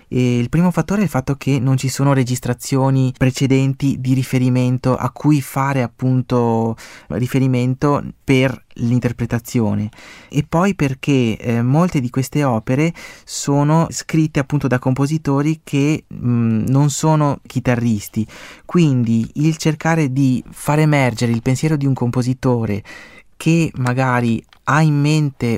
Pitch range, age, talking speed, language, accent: 120-140 Hz, 20-39, 125 wpm, Italian, native